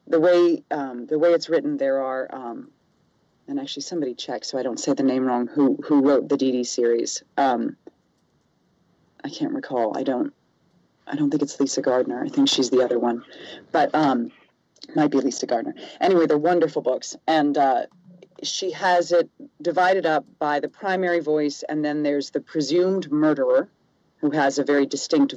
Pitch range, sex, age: 145-200 Hz, female, 40-59